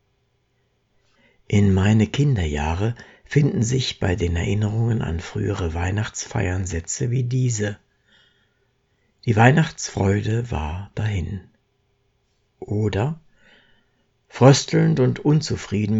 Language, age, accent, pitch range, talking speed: German, 60-79, German, 105-130 Hz, 85 wpm